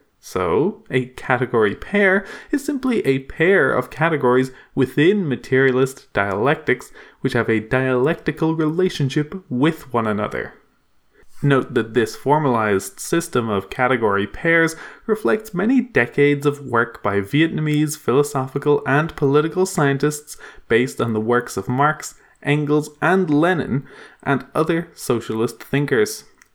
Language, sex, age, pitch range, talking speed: English, male, 20-39, 125-165 Hz, 120 wpm